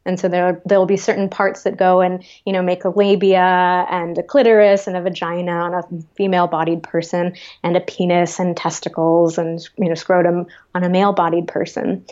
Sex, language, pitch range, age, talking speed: female, English, 180-210 Hz, 20-39, 190 wpm